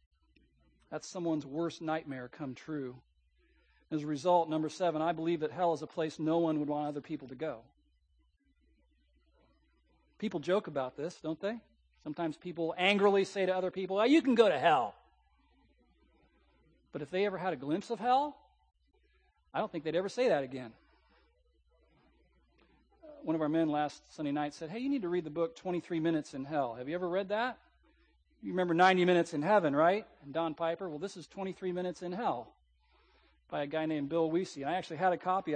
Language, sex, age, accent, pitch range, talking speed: English, male, 40-59, American, 145-185 Hz, 190 wpm